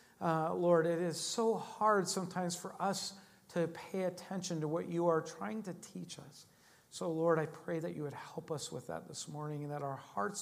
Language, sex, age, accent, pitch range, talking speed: English, male, 50-69, American, 140-170 Hz, 215 wpm